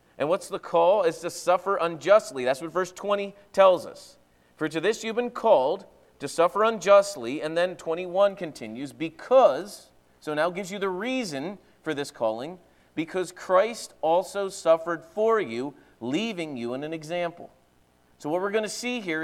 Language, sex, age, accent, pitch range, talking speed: English, male, 40-59, American, 150-200 Hz, 170 wpm